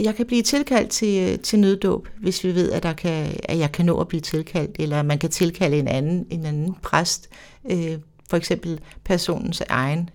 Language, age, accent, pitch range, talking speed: Danish, 60-79, native, 165-200 Hz, 200 wpm